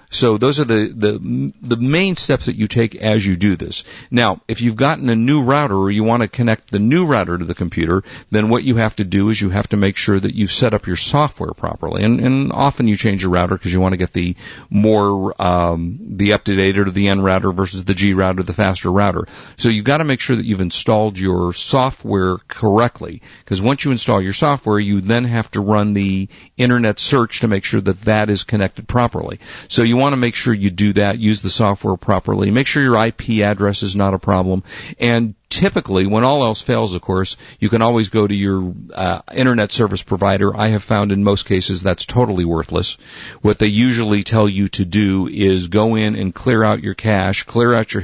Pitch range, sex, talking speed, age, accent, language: 95-115 Hz, male, 230 wpm, 50-69, American, English